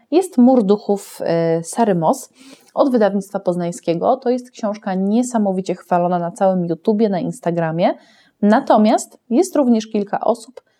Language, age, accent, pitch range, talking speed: Polish, 20-39, native, 175-225 Hz, 120 wpm